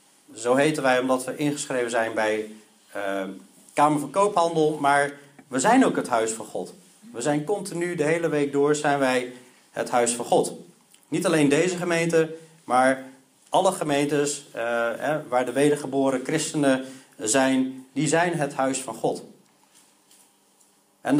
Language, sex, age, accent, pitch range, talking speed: Dutch, male, 40-59, Dutch, 130-170 Hz, 150 wpm